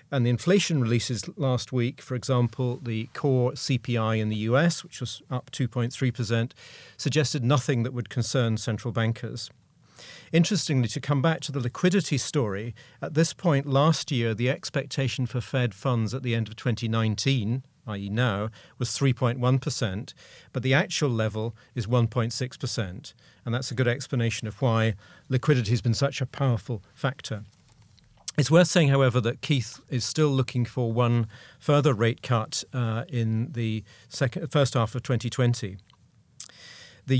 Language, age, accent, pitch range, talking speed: English, 40-59, British, 120-140 Hz, 150 wpm